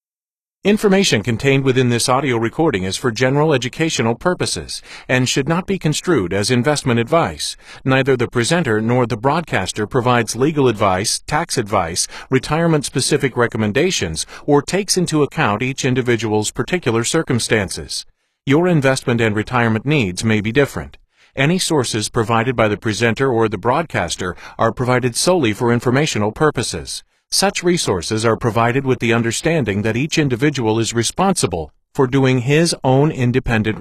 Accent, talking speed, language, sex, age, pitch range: American, 140 wpm, English, male, 50-69, 115-150 Hz